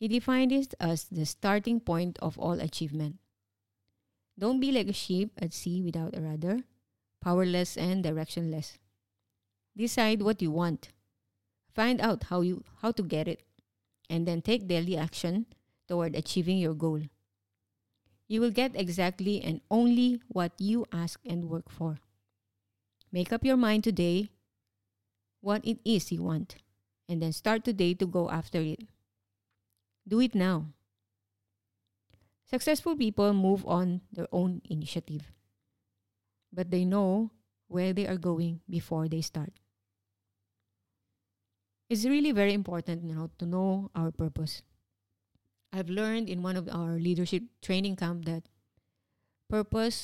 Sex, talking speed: female, 135 wpm